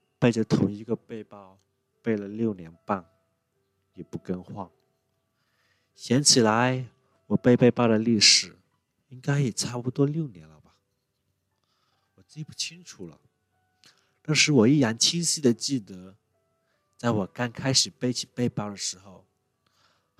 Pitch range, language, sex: 100-135 Hz, Chinese, male